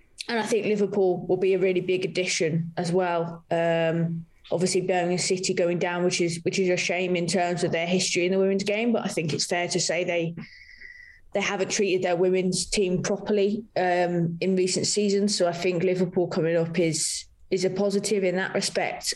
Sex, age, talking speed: female, 20-39, 205 wpm